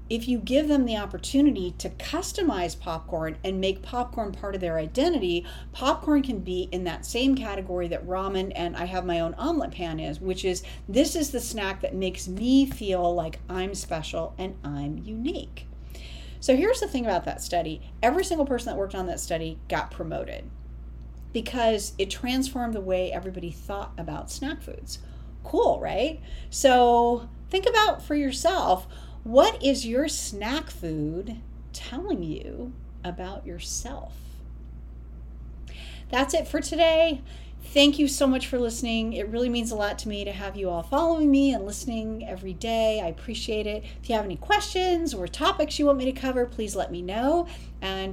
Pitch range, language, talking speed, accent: 175-265 Hz, English, 175 wpm, American